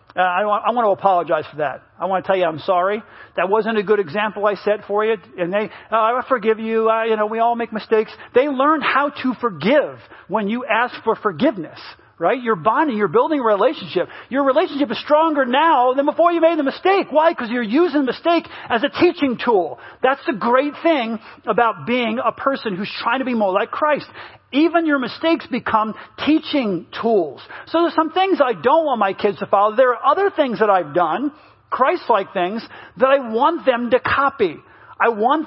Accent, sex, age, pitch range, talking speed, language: American, male, 40-59, 210-285 Hz, 210 wpm, English